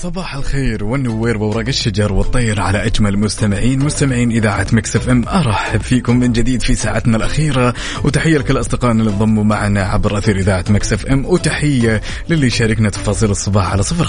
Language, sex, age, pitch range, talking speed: Arabic, male, 20-39, 105-125 Hz, 160 wpm